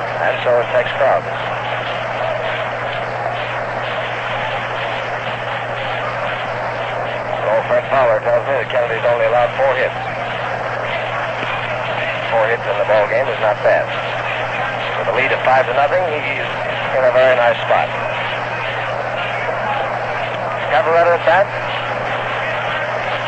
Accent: American